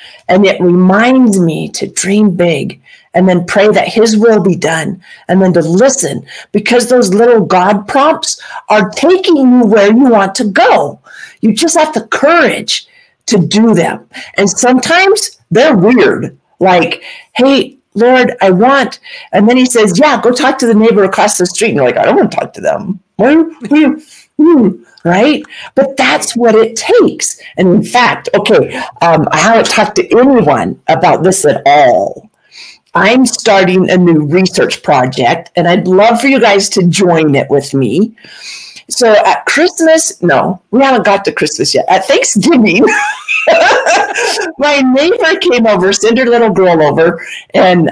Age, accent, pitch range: 50-69, American, 190-270 Hz